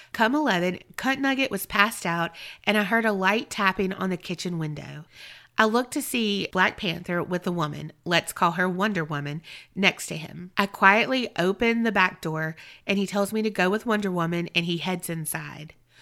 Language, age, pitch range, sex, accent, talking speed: English, 30-49, 175-215 Hz, female, American, 200 wpm